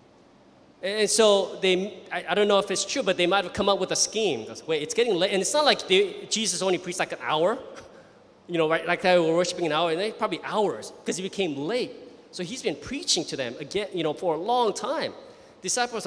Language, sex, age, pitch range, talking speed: English, male, 20-39, 175-225 Hz, 245 wpm